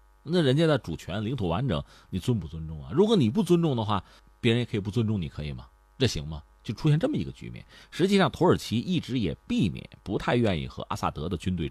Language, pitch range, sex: Chinese, 80-130 Hz, male